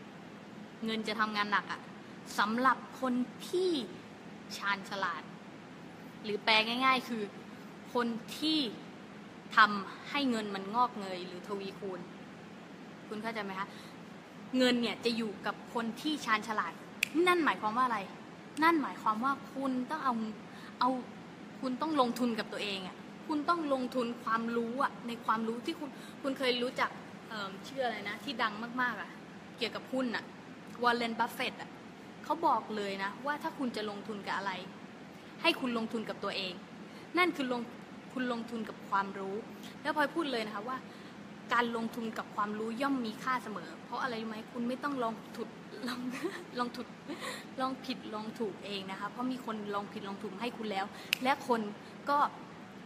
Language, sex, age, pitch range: English, female, 20-39, 205-250 Hz